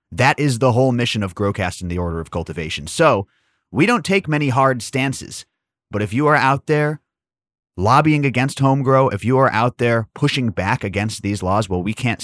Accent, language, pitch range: American, English, 95-125 Hz